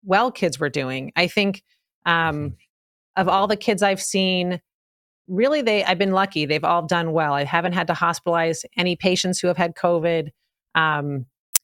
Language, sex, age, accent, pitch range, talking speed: English, female, 30-49, American, 165-200 Hz, 175 wpm